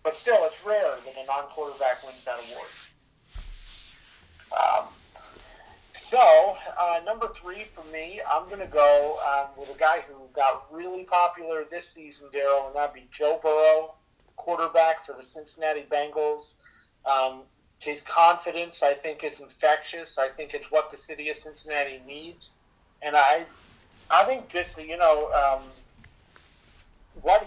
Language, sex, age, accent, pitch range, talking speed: English, male, 50-69, American, 140-165 Hz, 145 wpm